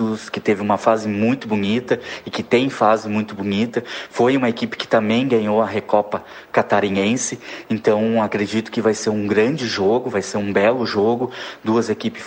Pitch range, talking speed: 105-115 Hz, 175 wpm